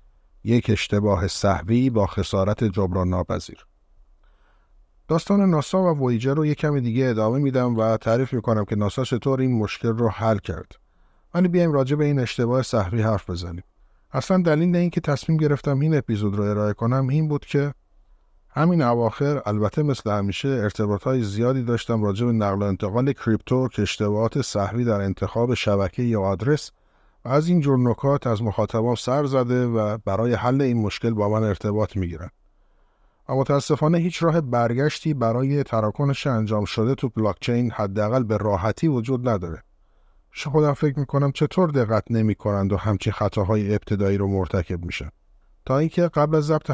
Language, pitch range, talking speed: Persian, 105-140 Hz, 165 wpm